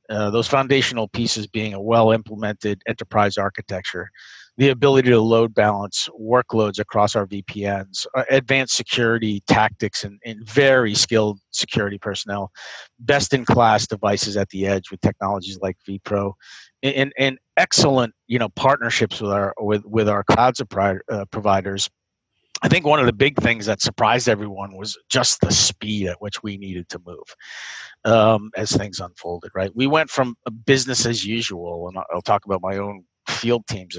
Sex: male